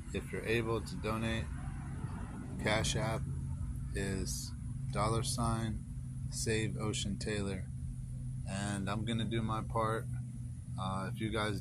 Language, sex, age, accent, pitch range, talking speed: English, male, 30-49, American, 90-105 Hz, 125 wpm